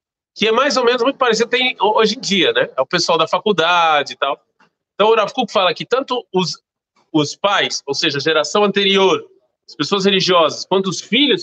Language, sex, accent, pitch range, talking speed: Portuguese, male, Brazilian, 175-235 Hz, 210 wpm